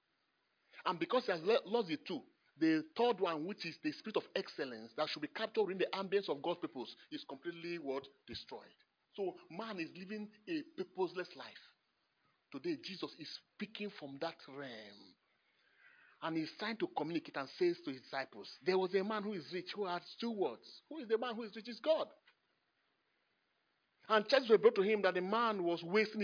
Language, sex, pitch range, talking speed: English, male, 200-295 Hz, 200 wpm